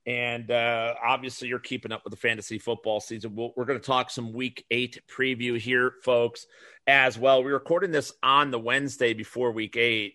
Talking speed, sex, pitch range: 190 wpm, male, 105-125 Hz